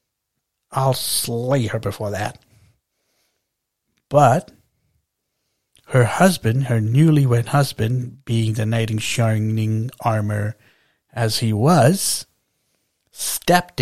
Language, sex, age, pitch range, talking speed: English, male, 60-79, 110-135 Hz, 90 wpm